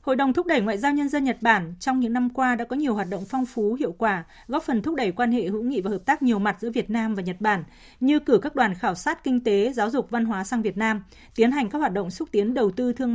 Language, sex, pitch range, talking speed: Vietnamese, female, 200-255 Hz, 305 wpm